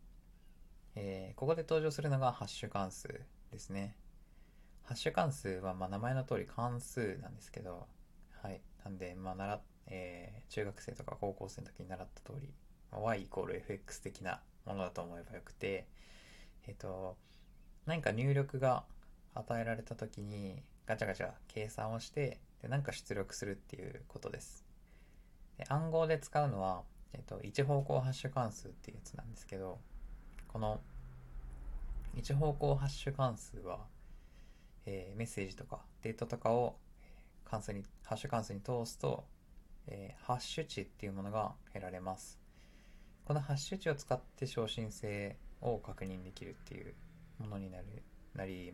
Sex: male